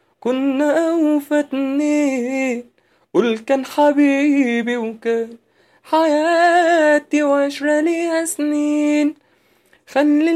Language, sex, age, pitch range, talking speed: English, male, 20-39, 225-295 Hz, 70 wpm